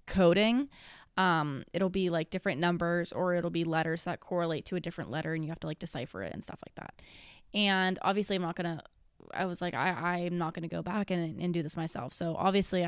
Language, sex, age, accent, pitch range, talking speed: English, female, 10-29, American, 160-200 Hz, 240 wpm